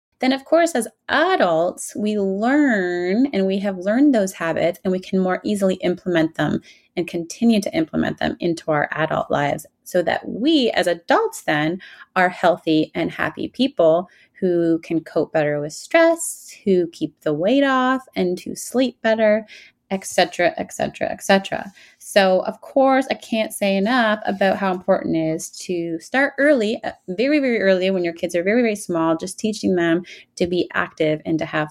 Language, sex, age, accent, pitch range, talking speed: English, female, 30-49, American, 175-255 Hz, 180 wpm